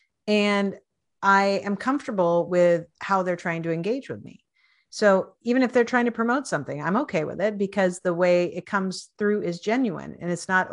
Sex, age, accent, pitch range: female, 40-59, American, 170-225 Hz